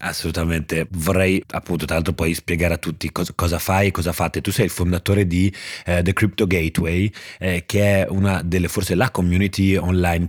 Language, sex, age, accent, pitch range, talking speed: Italian, male, 30-49, native, 85-100 Hz, 190 wpm